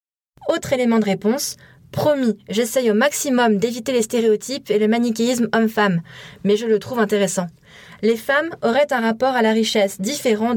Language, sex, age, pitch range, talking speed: French, female, 20-39, 210-265 Hz, 165 wpm